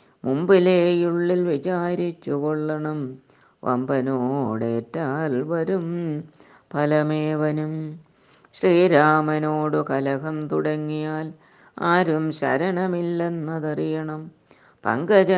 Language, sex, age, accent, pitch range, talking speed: Malayalam, female, 30-49, native, 150-180 Hz, 45 wpm